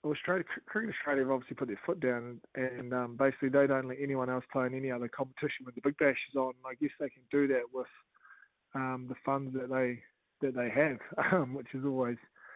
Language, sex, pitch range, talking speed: English, male, 130-145 Hz, 220 wpm